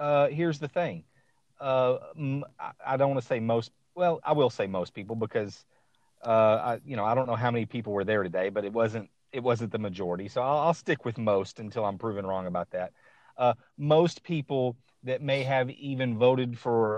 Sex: male